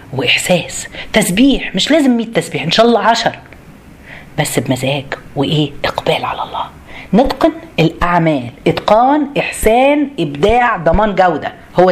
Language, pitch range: Arabic, 165-255 Hz